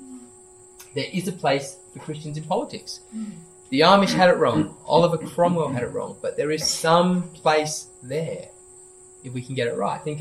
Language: English